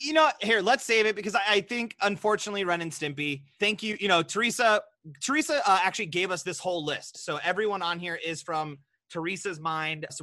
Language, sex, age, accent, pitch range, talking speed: English, male, 30-49, American, 160-220 Hz, 210 wpm